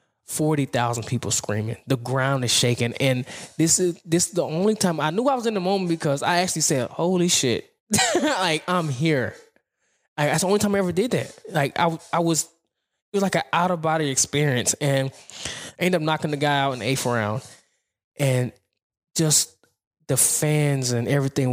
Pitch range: 125-165 Hz